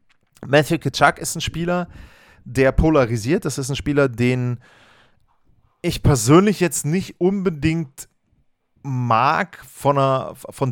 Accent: German